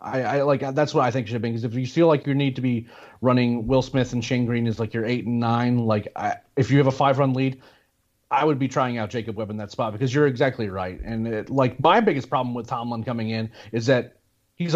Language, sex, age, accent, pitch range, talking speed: English, male, 30-49, American, 120-145 Hz, 270 wpm